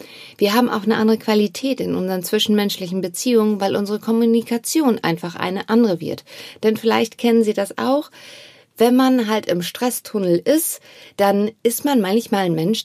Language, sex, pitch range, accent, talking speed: German, female, 180-250 Hz, German, 165 wpm